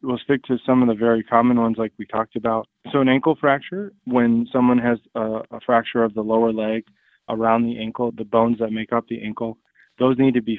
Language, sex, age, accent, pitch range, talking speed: English, male, 20-39, American, 110-125 Hz, 230 wpm